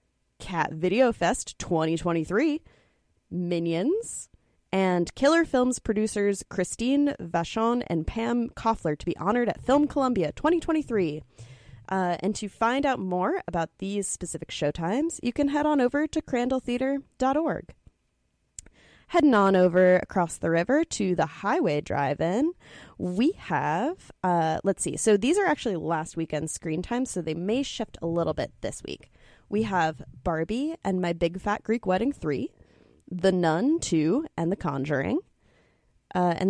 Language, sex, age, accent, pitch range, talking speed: English, female, 20-39, American, 175-265 Hz, 145 wpm